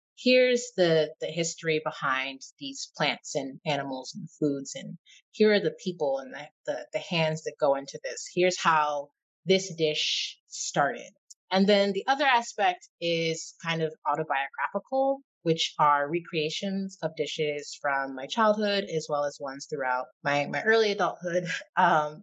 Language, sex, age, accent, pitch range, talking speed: English, female, 30-49, American, 150-205 Hz, 155 wpm